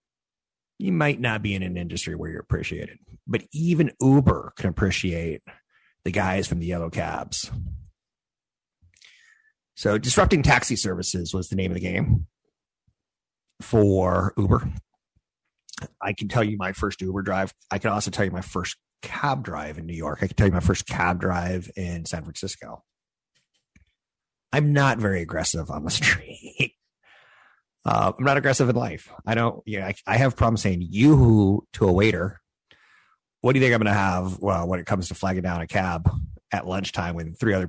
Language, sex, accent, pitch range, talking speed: English, male, American, 90-110 Hz, 180 wpm